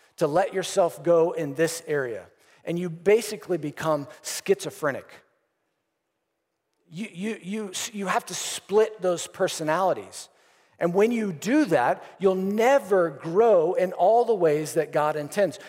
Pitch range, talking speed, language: 170-215 Hz, 140 wpm, English